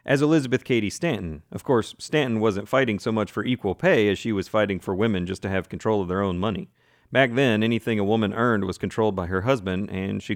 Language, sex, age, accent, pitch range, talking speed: English, male, 40-59, American, 100-140 Hz, 240 wpm